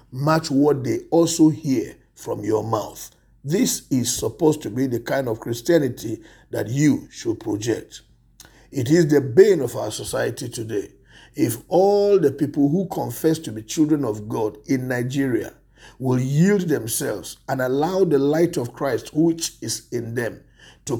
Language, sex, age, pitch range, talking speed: English, male, 50-69, 120-165 Hz, 160 wpm